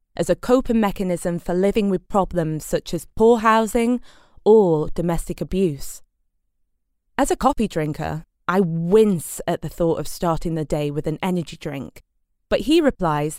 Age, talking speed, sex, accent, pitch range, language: 20-39, 155 wpm, female, British, 160-220 Hz, English